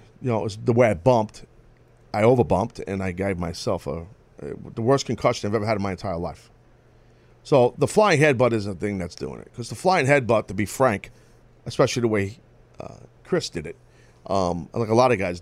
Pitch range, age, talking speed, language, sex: 100-125 Hz, 40-59, 220 wpm, English, male